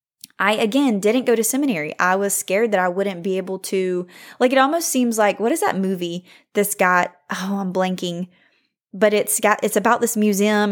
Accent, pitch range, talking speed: American, 185-230 Hz, 200 wpm